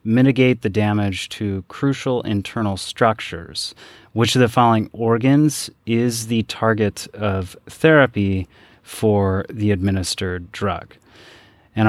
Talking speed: 110 wpm